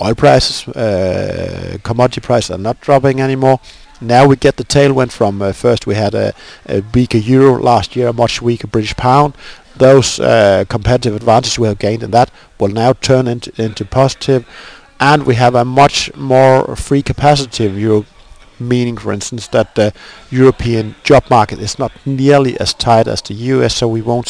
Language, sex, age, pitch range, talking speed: Finnish, male, 50-69, 110-135 Hz, 185 wpm